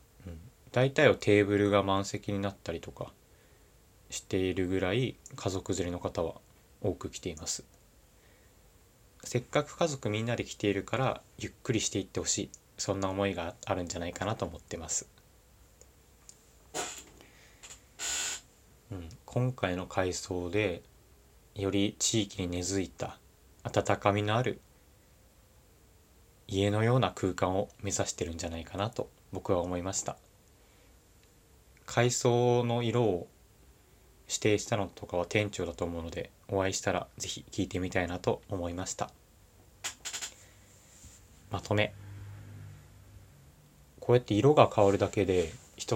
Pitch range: 90-110 Hz